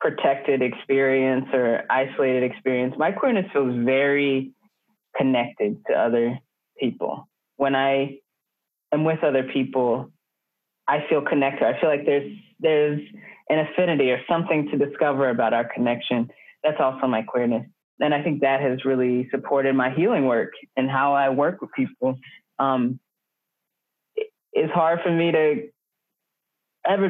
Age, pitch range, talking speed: 20-39, 135-185 Hz, 140 wpm